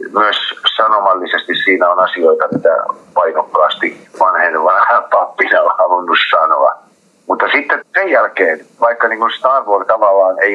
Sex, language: male, Finnish